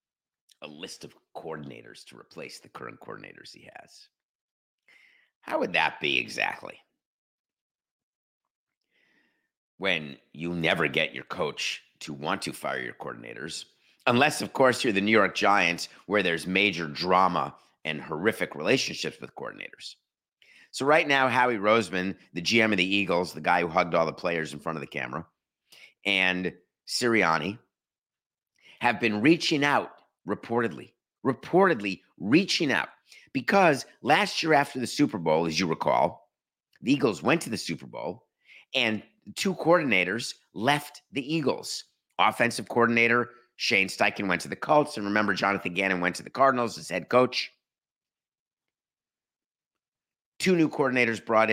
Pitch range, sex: 90-125 Hz, male